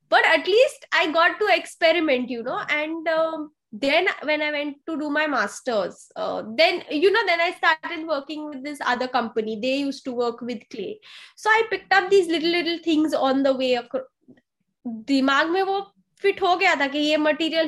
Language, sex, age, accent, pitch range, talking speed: Hindi, female, 20-39, native, 250-325 Hz, 200 wpm